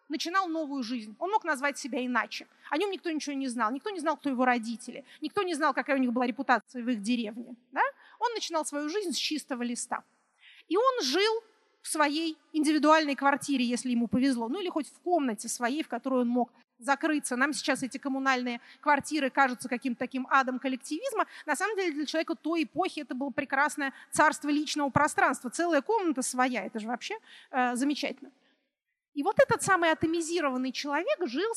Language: Russian